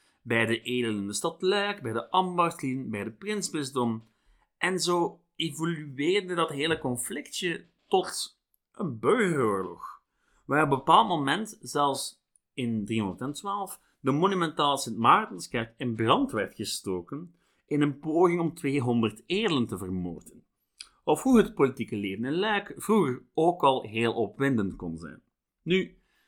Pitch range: 115-165 Hz